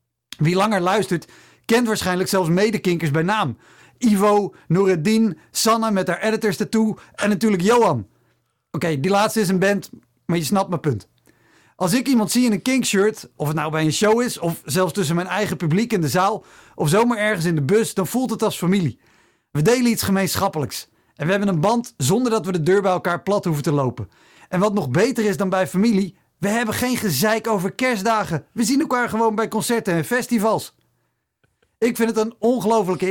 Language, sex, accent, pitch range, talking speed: Dutch, male, Dutch, 165-220 Hz, 205 wpm